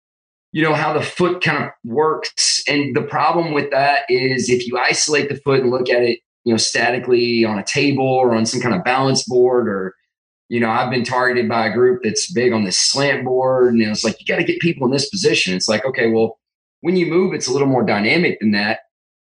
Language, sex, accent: English, male, American